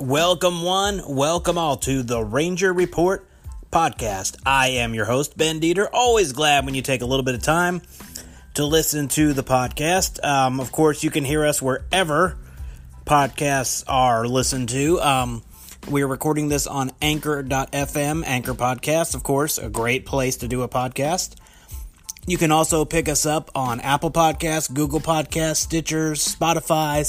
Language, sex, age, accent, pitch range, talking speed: English, male, 30-49, American, 130-160 Hz, 160 wpm